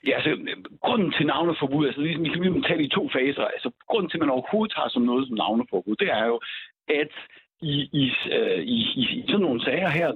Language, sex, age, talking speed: Danish, male, 60-79, 235 wpm